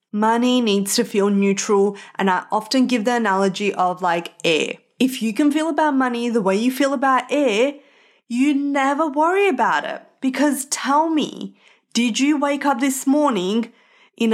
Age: 20-39